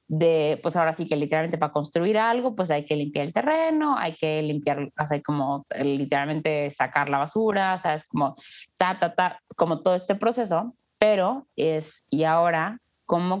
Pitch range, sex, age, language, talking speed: 150-195 Hz, female, 20-39, Spanish, 180 wpm